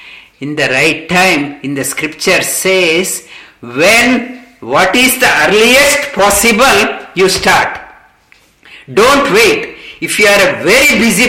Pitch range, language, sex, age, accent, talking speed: 170-210 Hz, English, male, 50-69, Indian, 130 wpm